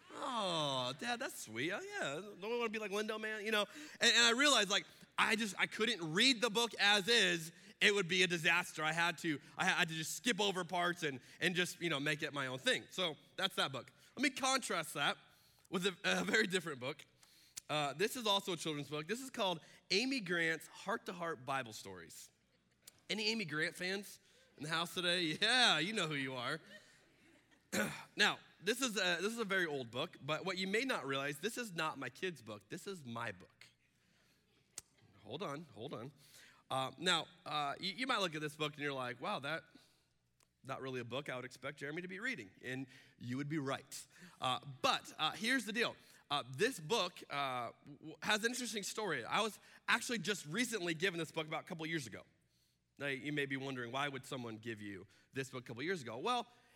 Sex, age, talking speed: male, 20-39, 215 wpm